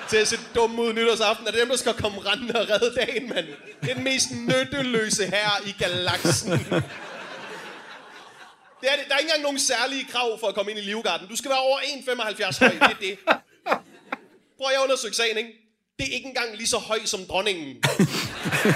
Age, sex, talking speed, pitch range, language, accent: 30-49, male, 190 wpm, 200-255 Hz, Danish, native